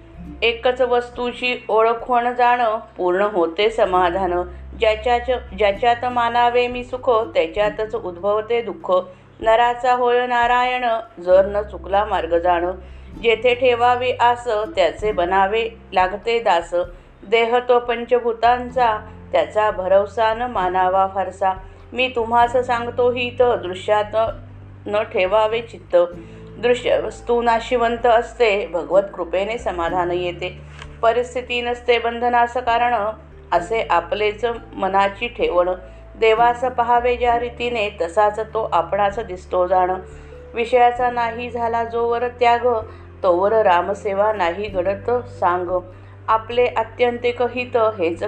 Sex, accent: female, native